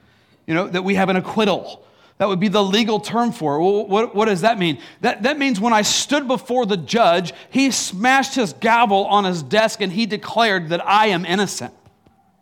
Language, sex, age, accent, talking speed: English, male, 40-59, American, 210 wpm